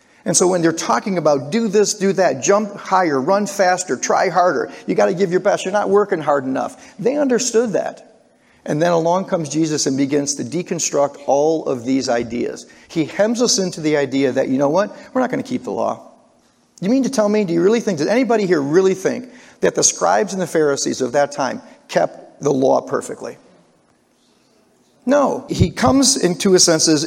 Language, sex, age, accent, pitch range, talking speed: English, male, 40-59, American, 145-205 Hz, 205 wpm